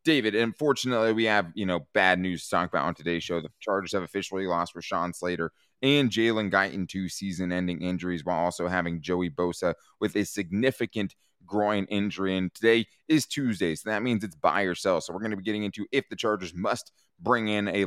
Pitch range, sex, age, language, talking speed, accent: 90-125 Hz, male, 20-39, English, 205 wpm, American